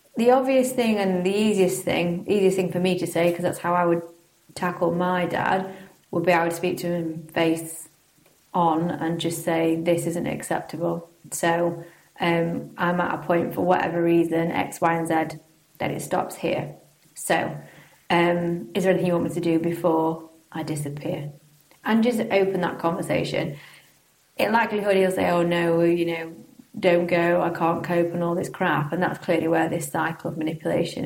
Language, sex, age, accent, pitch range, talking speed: English, female, 30-49, British, 165-180 Hz, 185 wpm